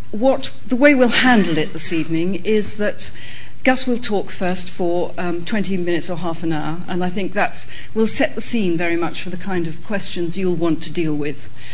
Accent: British